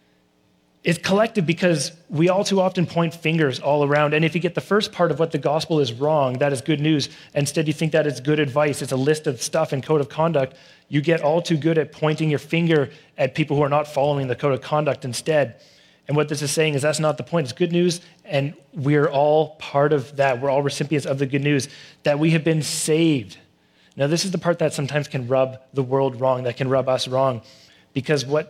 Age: 30-49